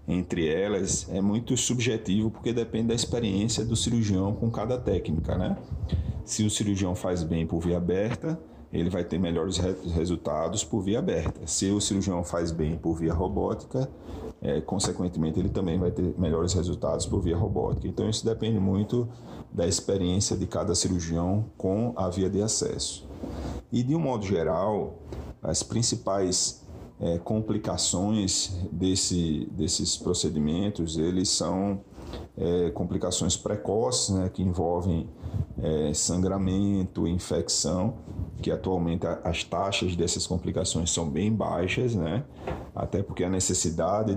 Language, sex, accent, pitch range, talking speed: Portuguese, male, Brazilian, 85-105 Hz, 135 wpm